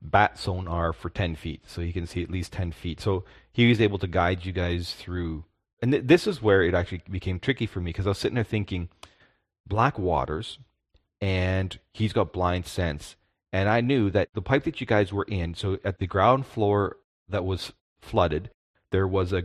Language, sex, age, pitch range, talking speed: English, male, 30-49, 85-105 Hz, 210 wpm